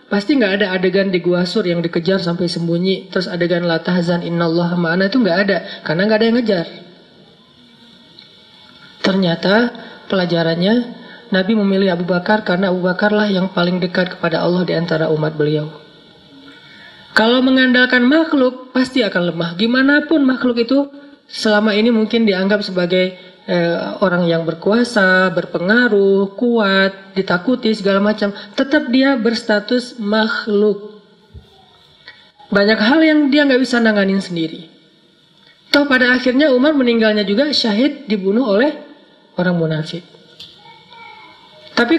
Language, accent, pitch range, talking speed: Indonesian, native, 180-245 Hz, 125 wpm